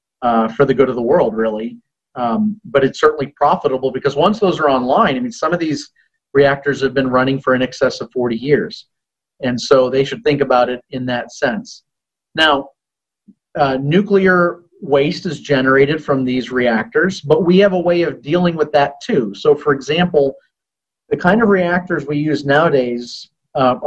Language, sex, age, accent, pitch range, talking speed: English, male, 40-59, American, 130-175 Hz, 185 wpm